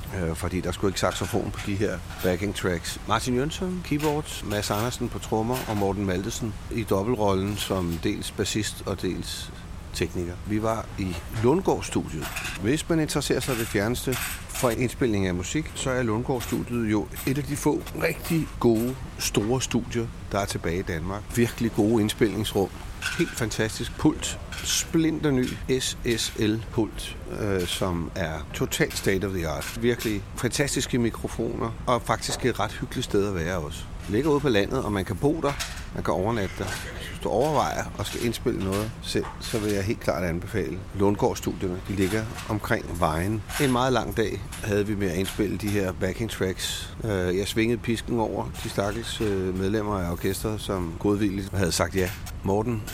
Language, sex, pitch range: Danish, male, 90-115 Hz